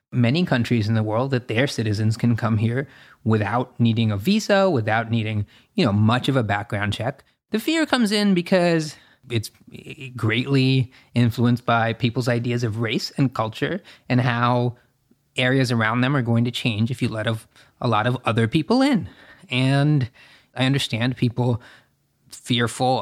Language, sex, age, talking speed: English, male, 20-39, 160 wpm